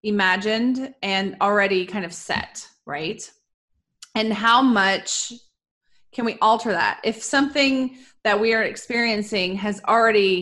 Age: 20-39